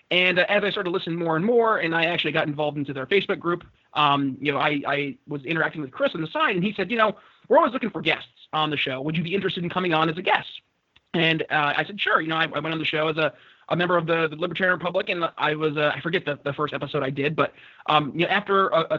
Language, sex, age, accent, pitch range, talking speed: English, male, 30-49, American, 150-180 Hz, 295 wpm